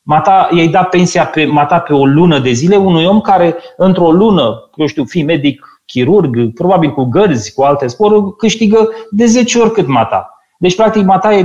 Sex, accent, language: male, native, Romanian